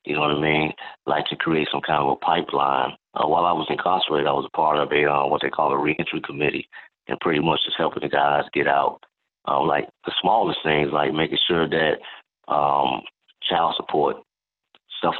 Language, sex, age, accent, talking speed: English, male, 30-49, American, 210 wpm